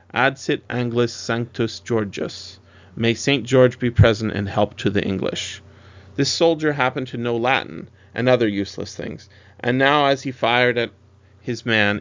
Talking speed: 160 wpm